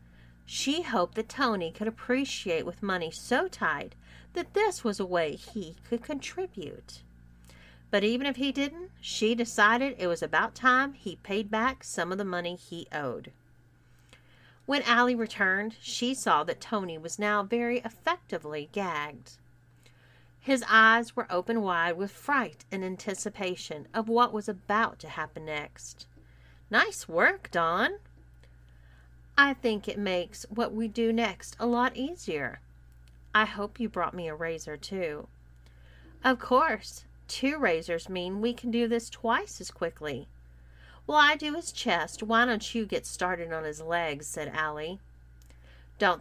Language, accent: English, American